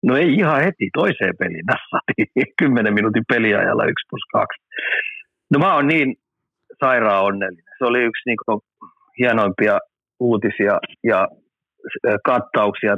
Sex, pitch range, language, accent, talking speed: male, 105-125 Hz, Finnish, native, 125 wpm